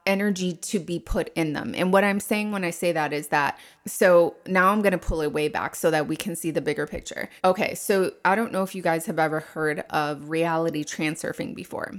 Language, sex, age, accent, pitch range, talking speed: English, female, 20-39, American, 160-195 Hz, 240 wpm